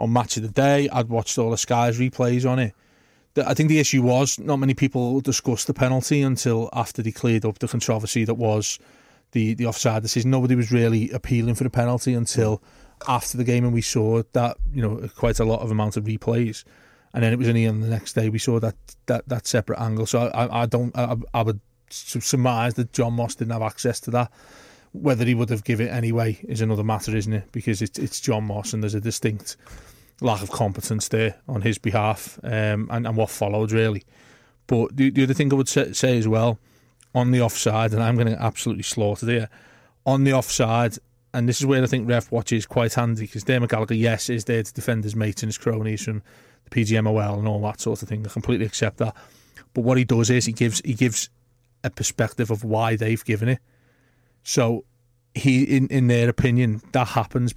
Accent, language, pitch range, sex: British, English, 110-125 Hz, male